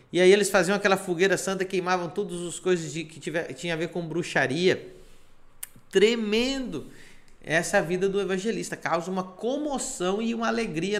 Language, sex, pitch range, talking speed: Portuguese, male, 155-190 Hz, 160 wpm